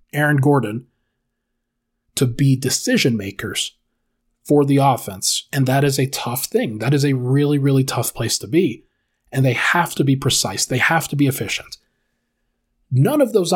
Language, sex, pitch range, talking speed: English, male, 125-155 Hz, 170 wpm